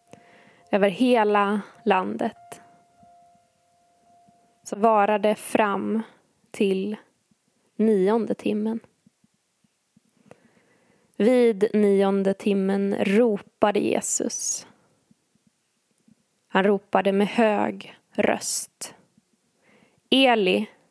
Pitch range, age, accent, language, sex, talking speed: 205-230 Hz, 20-39, native, Swedish, female, 55 wpm